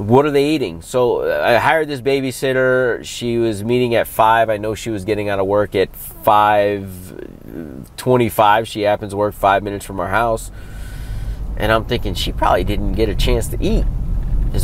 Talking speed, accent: 185 wpm, American